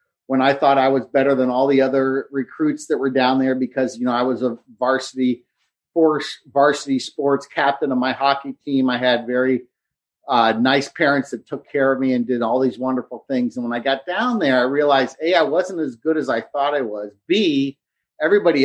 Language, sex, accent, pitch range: English, male, American, 125-145 Hz